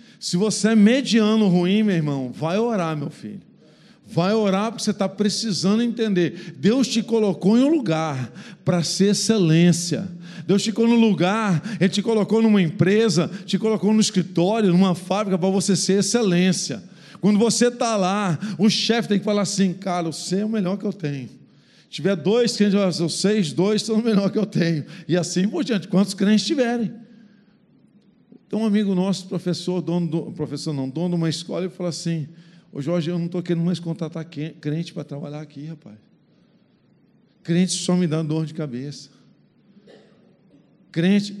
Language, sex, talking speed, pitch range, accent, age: Portuguese, male, 170 wpm, 165-205 Hz, Brazilian, 50-69